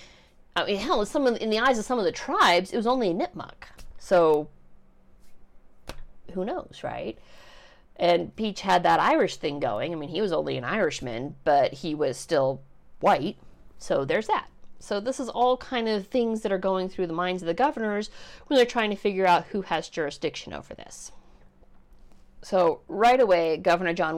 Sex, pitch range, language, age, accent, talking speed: female, 145-195 Hz, English, 40-59, American, 185 wpm